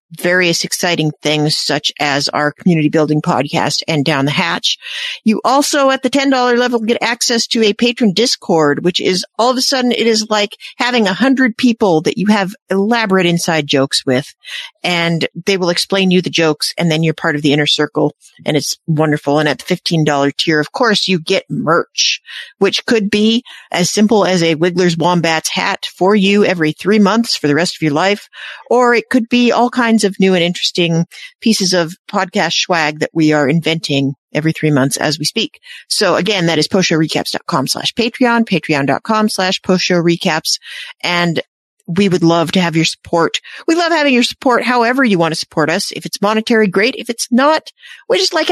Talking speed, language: 195 wpm, English